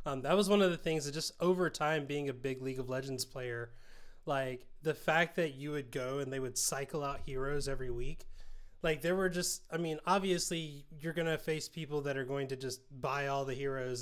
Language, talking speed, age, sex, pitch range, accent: English, 230 wpm, 20-39, male, 135-165 Hz, American